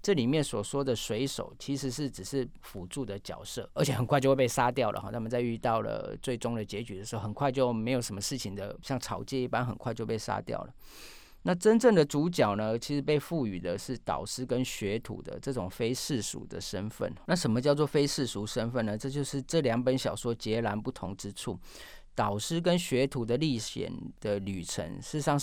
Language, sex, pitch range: Chinese, male, 110-145 Hz